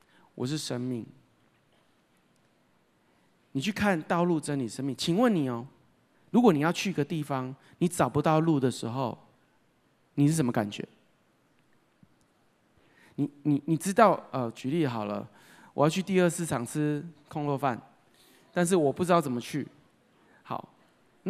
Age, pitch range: 30-49, 145-220 Hz